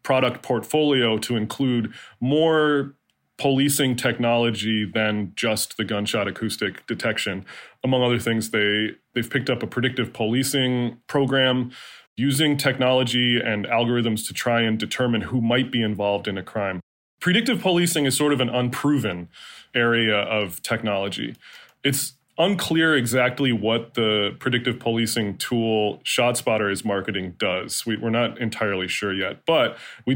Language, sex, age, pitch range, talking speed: English, male, 20-39, 110-135 Hz, 135 wpm